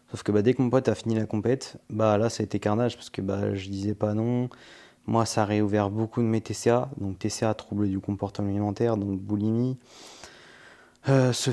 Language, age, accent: French, 20-39, French